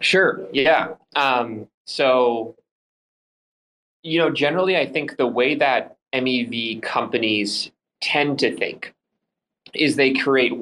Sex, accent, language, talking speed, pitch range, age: male, American, English, 115 wpm, 110-135 Hz, 20-39